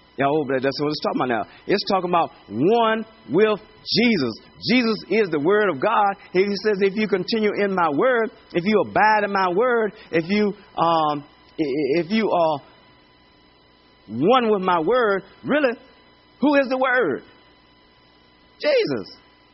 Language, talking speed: English, 160 wpm